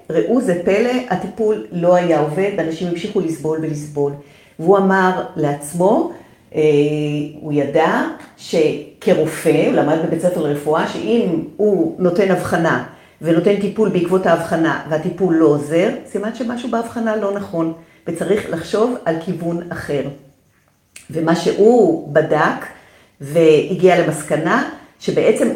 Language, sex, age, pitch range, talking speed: Hebrew, female, 50-69, 155-200 Hz, 115 wpm